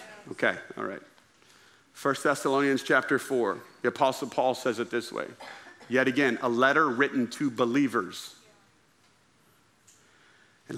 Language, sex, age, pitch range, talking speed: English, male, 40-59, 120-155 Hz, 120 wpm